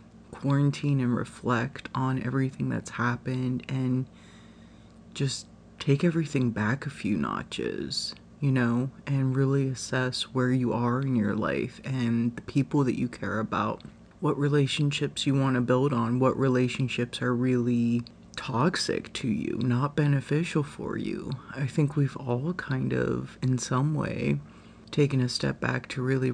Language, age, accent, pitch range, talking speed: English, 30-49, American, 120-140 Hz, 150 wpm